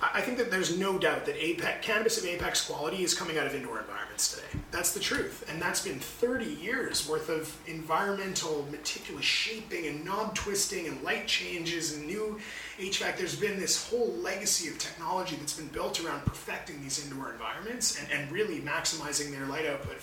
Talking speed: 190 wpm